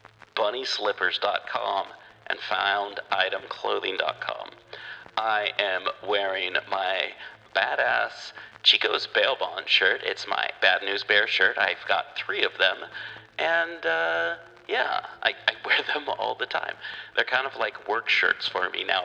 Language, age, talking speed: English, 40-59, 130 wpm